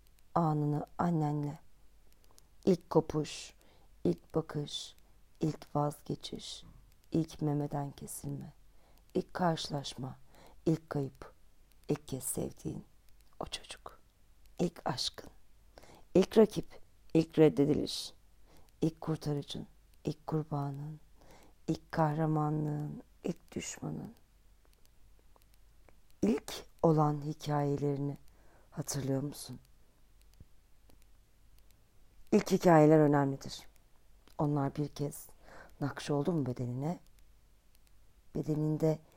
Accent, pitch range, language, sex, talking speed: native, 120-160 Hz, Turkish, female, 75 wpm